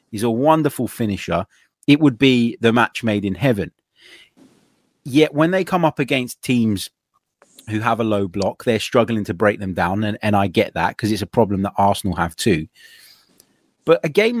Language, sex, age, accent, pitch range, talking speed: English, male, 30-49, British, 100-140 Hz, 190 wpm